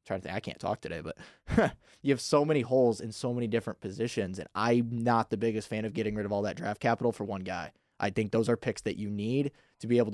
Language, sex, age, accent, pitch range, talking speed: English, male, 20-39, American, 105-120 Hz, 270 wpm